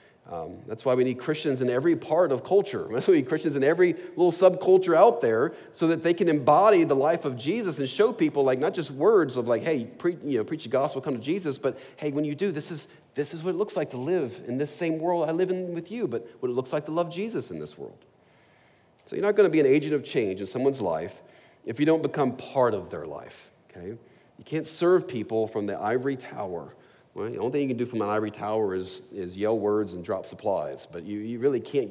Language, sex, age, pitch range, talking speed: English, male, 40-59, 120-180 Hz, 255 wpm